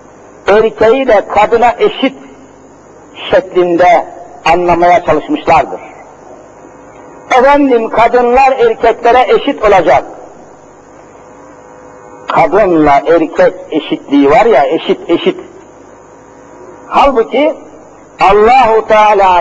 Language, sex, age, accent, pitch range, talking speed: Turkish, male, 50-69, native, 190-270 Hz, 70 wpm